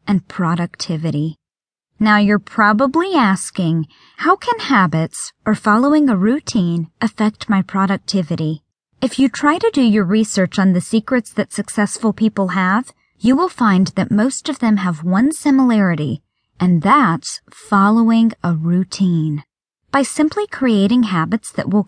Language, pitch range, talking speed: English, 180-245 Hz, 140 wpm